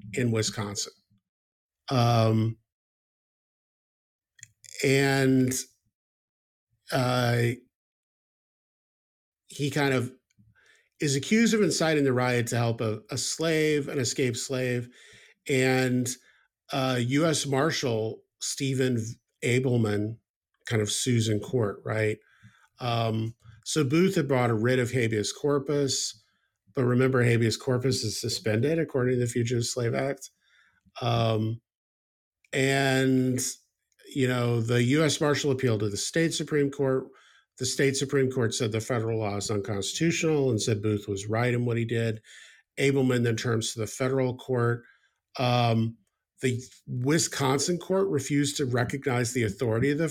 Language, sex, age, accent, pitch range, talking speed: English, male, 50-69, American, 110-135 Hz, 125 wpm